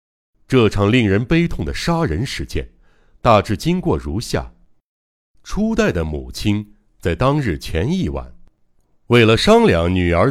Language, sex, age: Chinese, male, 60-79